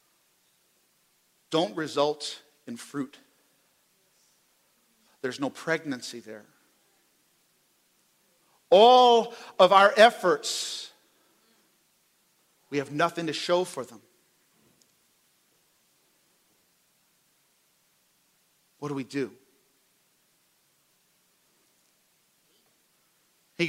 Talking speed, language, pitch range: 60 wpm, English, 140-190 Hz